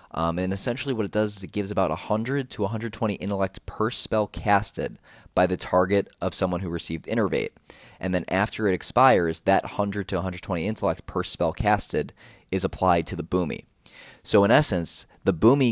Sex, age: male, 20-39